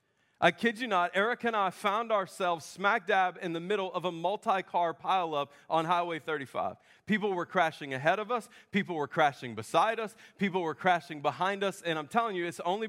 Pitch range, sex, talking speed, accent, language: 145-185 Hz, male, 200 wpm, American, English